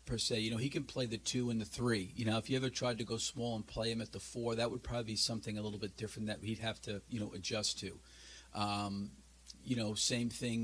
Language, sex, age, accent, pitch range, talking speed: English, male, 50-69, American, 105-120 Hz, 275 wpm